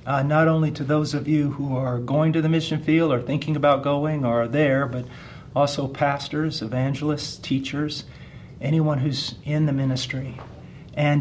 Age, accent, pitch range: 50-69, American, 130-145 Hz